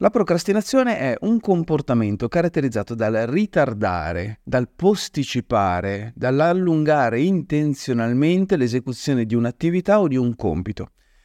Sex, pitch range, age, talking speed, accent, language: male, 110-150 Hz, 30-49, 100 wpm, native, Italian